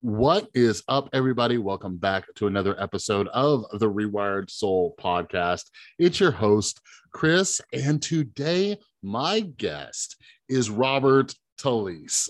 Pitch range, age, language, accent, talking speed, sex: 110-155 Hz, 30-49, English, American, 120 wpm, male